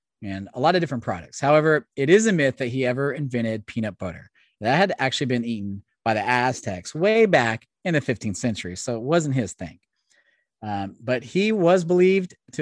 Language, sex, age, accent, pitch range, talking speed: English, male, 30-49, American, 120-180 Hz, 200 wpm